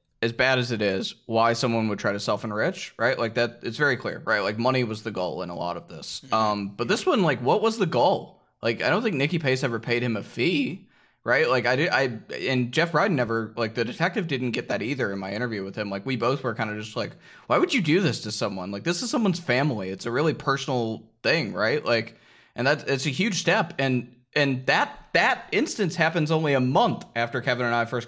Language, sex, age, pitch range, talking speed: English, male, 20-39, 110-135 Hz, 250 wpm